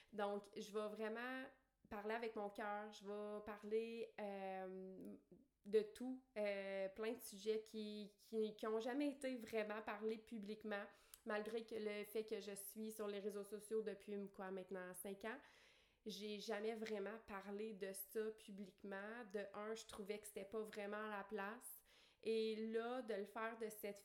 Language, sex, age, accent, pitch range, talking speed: French, female, 30-49, Canadian, 205-230 Hz, 170 wpm